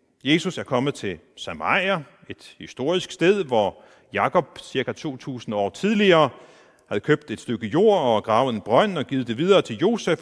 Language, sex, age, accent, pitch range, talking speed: Danish, male, 40-59, native, 115-180 Hz, 170 wpm